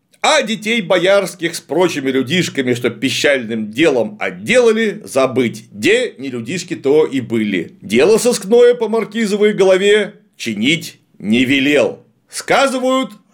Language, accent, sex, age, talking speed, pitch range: Russian, native, male, 40-59, 115 wpm, 140-210 Hz